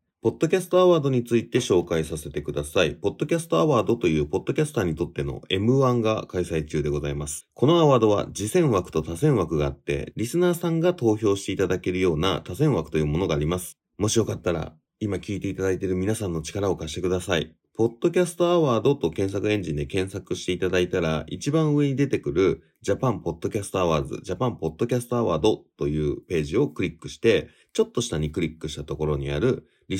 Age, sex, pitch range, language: 30-49, male, 80-120 Hz, Japanese